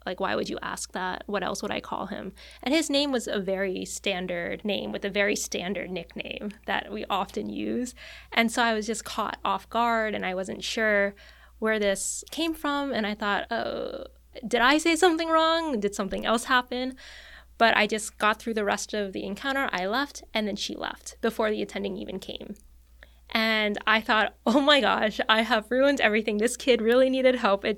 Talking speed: 205 wpm